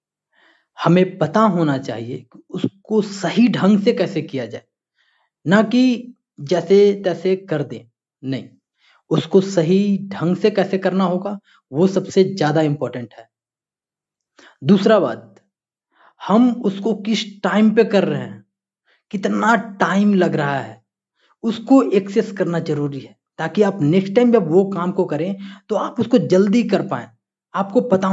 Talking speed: 145 wpm